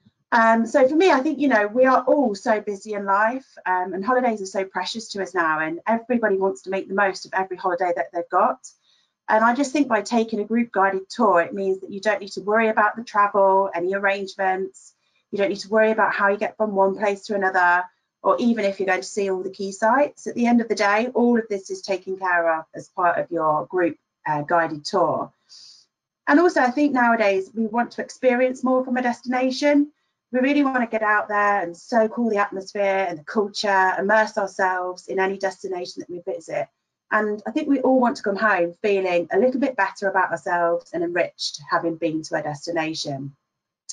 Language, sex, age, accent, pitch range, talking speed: English, female, 30-49, British, 190-240 Hz, 225 wpm